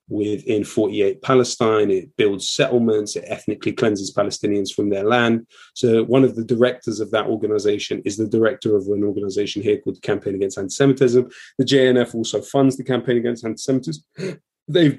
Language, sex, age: English, male, 30-49